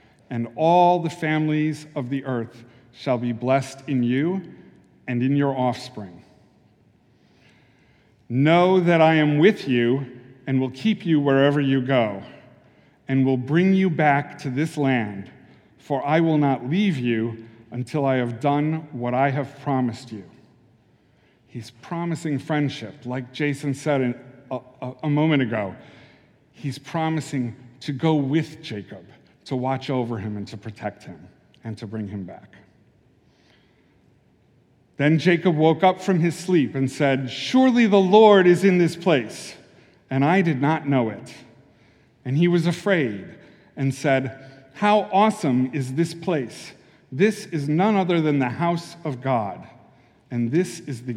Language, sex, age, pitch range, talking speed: English, male, 50-69, 125-165 Hz, 150 wpm